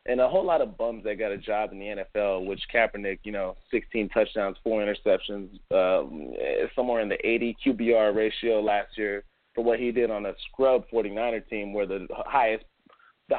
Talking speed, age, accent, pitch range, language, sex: 195 wpm, 30-49, American, 105-140 Hz, English, male